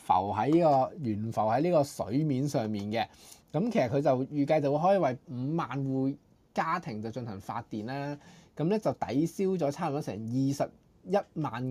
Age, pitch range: 20-39, 110-160 Hz